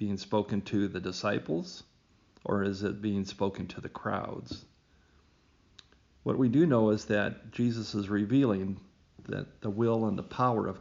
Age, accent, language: 50-69, American, English